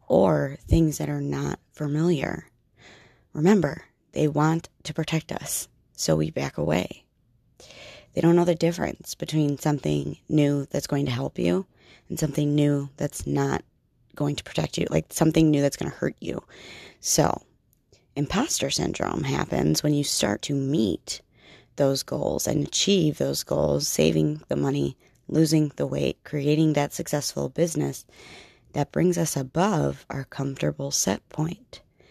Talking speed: 150 wpm